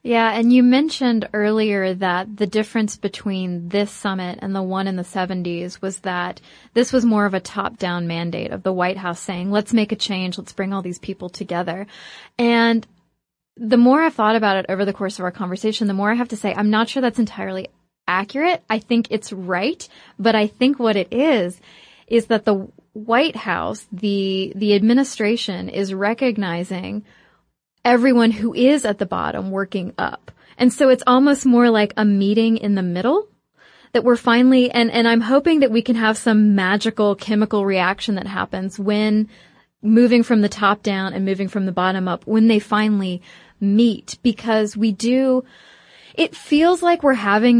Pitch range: 195-230 Hz